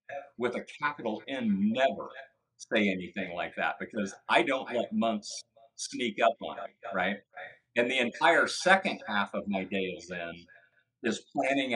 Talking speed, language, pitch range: 160 wpm, English, 95-120 Hz